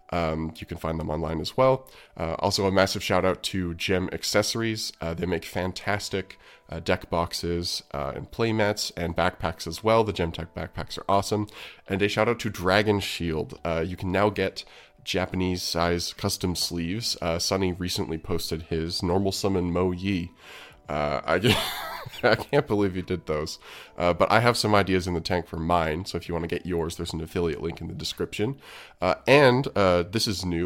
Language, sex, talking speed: English, male, 195 wpm